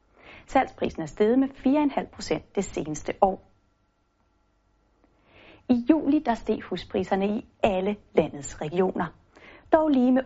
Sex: female